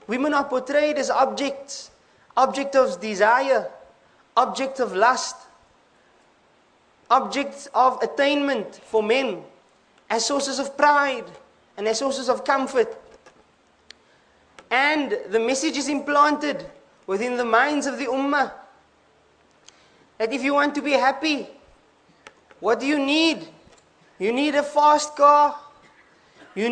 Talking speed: 120 wpm